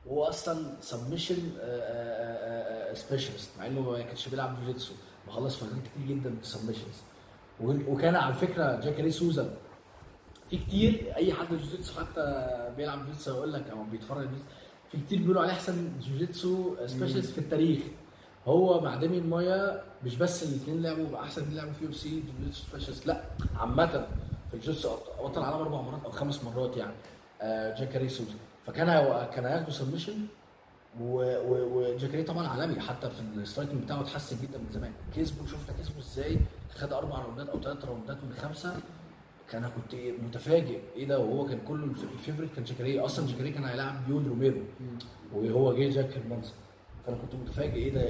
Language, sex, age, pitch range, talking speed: Arabic, male, 20-39, 120-150 Hz, 160 wpm